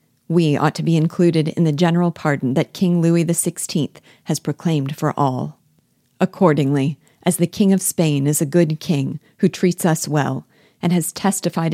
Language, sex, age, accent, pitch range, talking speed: English, female, 40-59, American, 145-170 Hz, 175 wpm